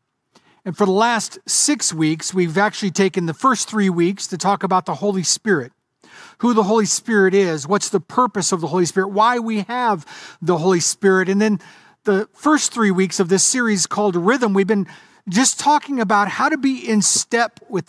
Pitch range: 180-225 Hz